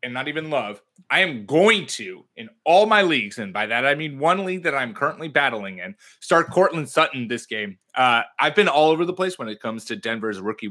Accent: American